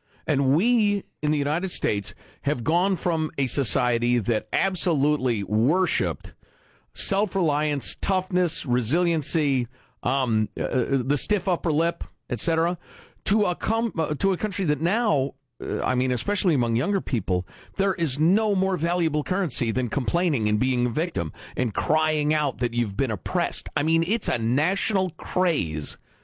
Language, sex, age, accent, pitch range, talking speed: English, male, 50-69, American, 125-190 Hz, 145 wpm